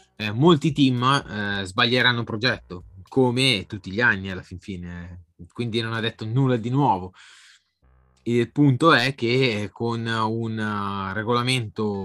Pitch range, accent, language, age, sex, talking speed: 100-125 Hz, native, Italian, 20-39, male, 140 wpm